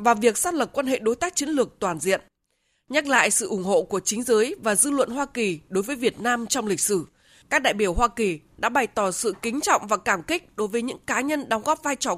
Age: 20-39